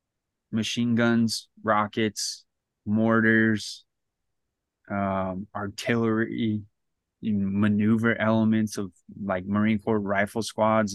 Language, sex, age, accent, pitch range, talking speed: English, male, 20-39, American, 105-120 Hz, 75 wpm